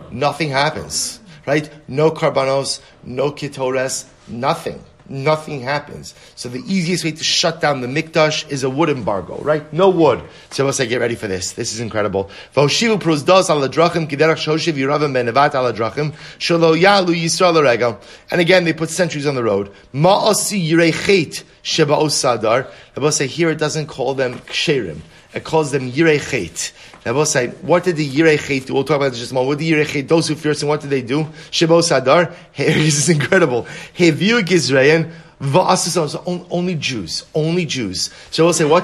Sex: male